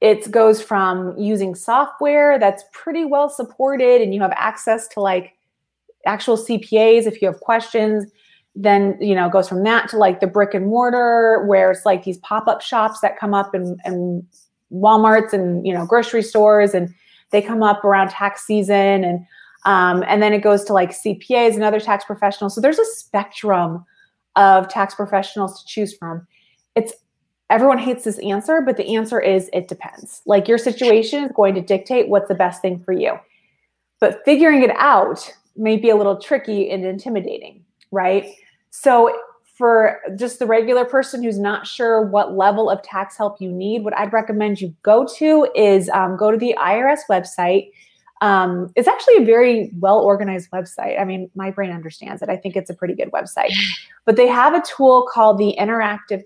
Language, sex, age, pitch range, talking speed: English, female, 30-49, 195-225 Hz, 185 wpm